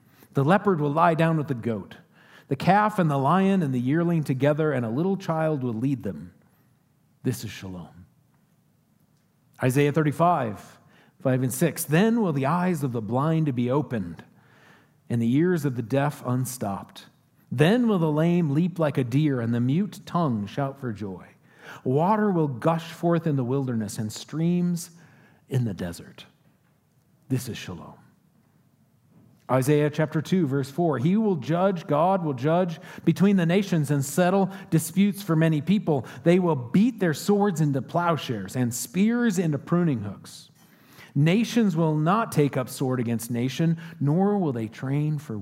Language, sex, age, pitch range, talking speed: English, male, 40-59, 135-170 Hz, 165 wpm